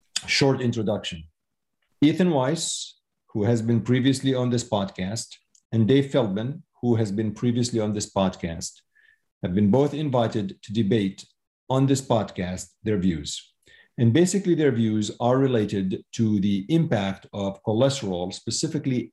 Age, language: 50-69, English